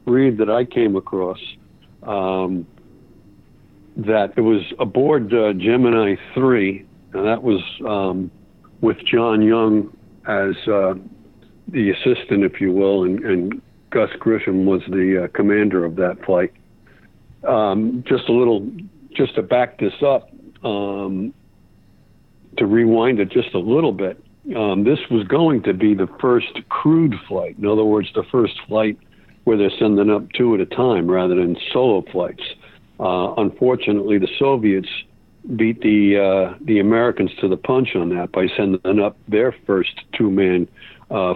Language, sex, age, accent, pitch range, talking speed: English, male, 60-79, American, 95-115 Hz, 150 wpm